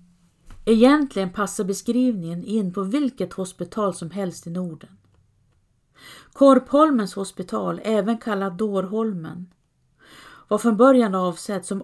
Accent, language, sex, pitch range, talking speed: native, Swedish, female, 175-215 Hz, 105 wpm